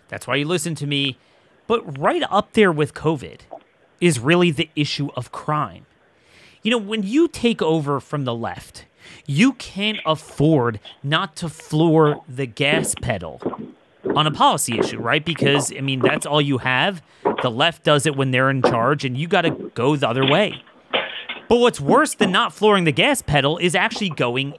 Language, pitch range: English, 140-195 Hz